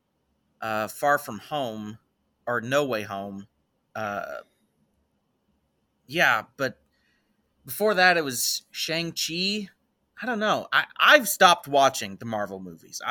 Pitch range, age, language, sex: 135-190 Hz, 30-49, English, male